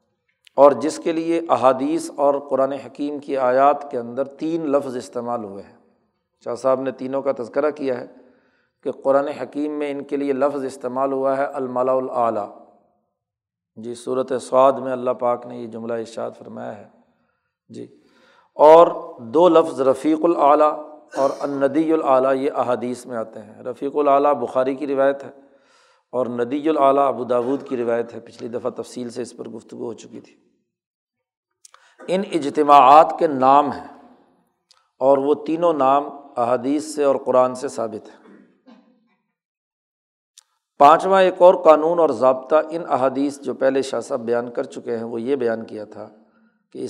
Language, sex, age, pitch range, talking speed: Urdu, male, 40-59, 125-150 Hz, 160 wpm